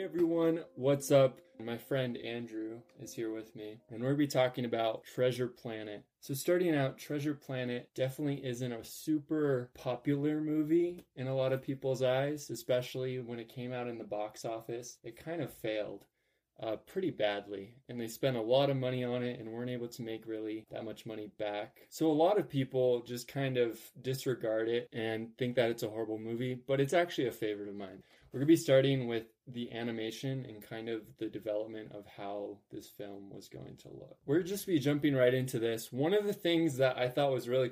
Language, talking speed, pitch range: English, 215 wpm, 115-140 Hz